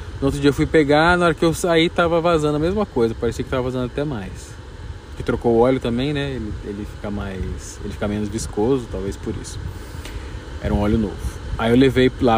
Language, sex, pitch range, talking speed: Portuguese, male, 100-140 Hz, 230 wpm